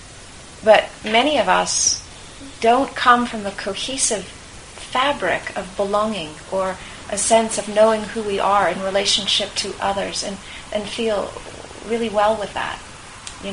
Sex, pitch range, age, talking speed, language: female, 195-225 Hz, 40-59, 140 wpm, English